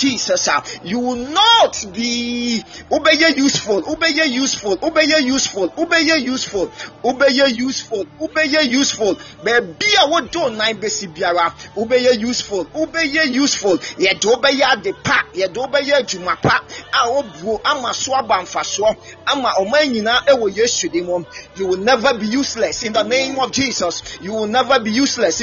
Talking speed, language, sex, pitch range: 160 wpm, English, male, 215-285 Hz